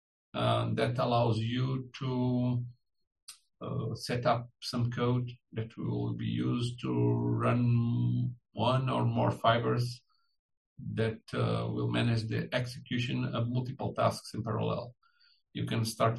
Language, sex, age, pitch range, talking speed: English, male, 50-69, 110-130 Hz, 125 wpm